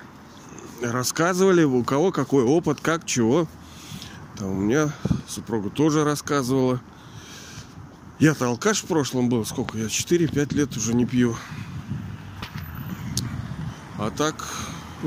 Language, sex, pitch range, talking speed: Russian, male, 135-175 Hz, 110 wpm